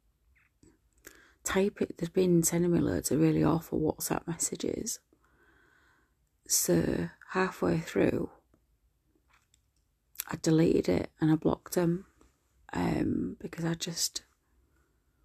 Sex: female